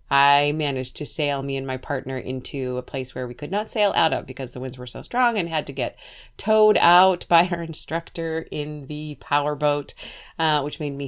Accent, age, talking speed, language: American, 30-49, 210 wpm, English